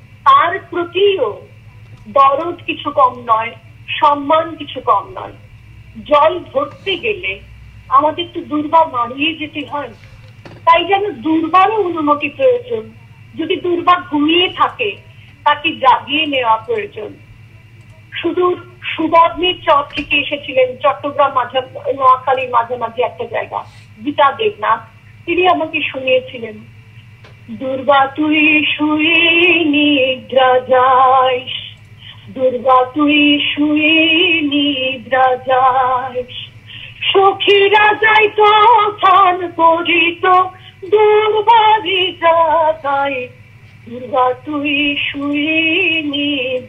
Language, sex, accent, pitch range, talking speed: English, female, Indian, 250-335 Hz, 50 wpm